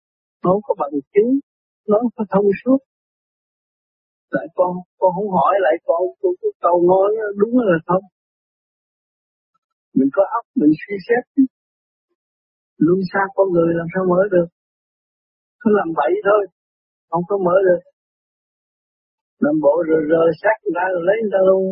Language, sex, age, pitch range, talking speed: Vietnamese, male, 50-69, 180-285 Hz, 155 wpm